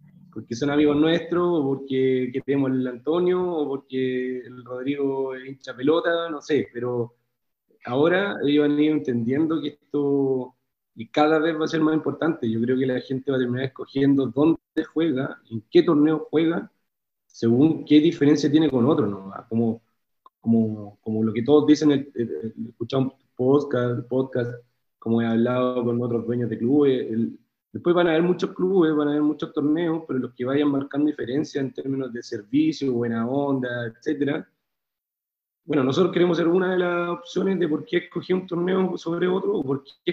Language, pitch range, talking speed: Spanish, 125-155 Hz, 180 wpm